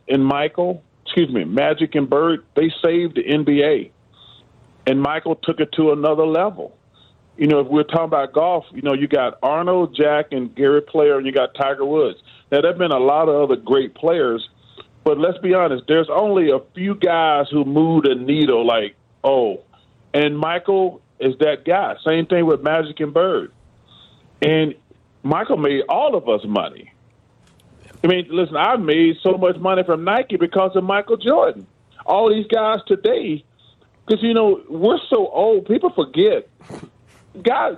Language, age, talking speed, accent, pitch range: English, 40-59, 175 wpm, American, 150-200 Hz